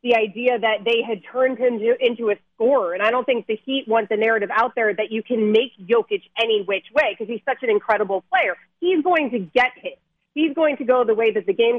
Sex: female